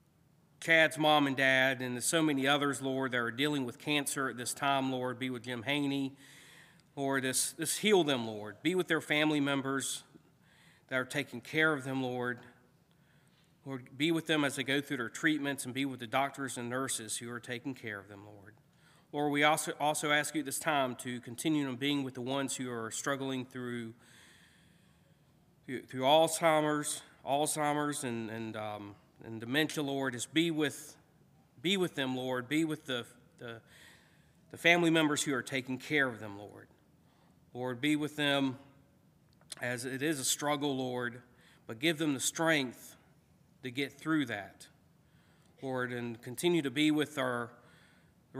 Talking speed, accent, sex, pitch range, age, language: 175 wpm, American, male, 125-150 Hz, 40-59, English